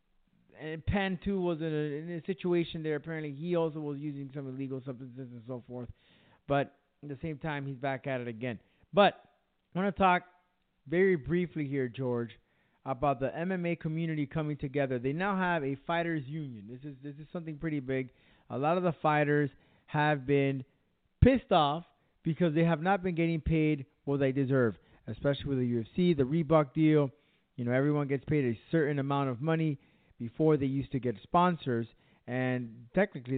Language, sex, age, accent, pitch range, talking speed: English, male, 30-49, American, 135-165 Hz, 185 wpm